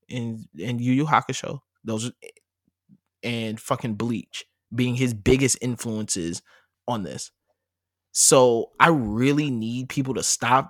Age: 20-39